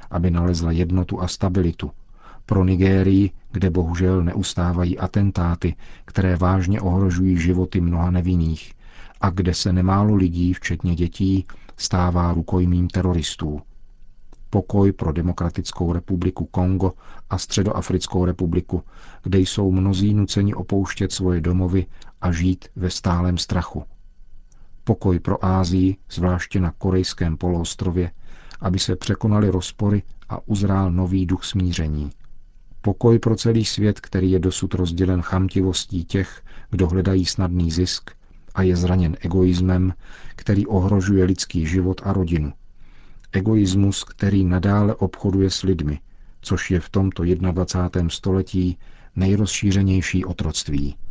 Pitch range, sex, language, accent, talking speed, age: 90-95 Hz, male, Czech, native, 120 wpm, 40-59